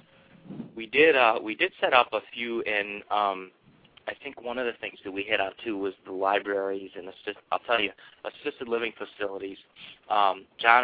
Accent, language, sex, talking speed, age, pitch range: American, English, male, 195 wpm, 30-49, 95-115 Hz